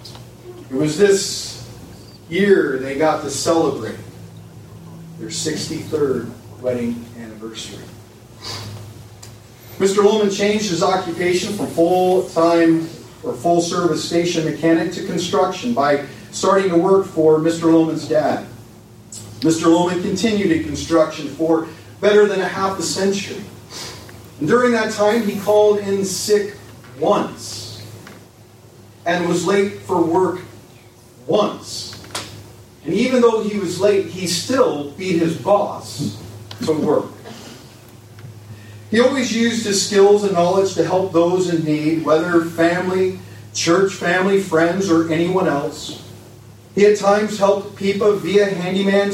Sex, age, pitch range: male, 40-59, 120-190 Hz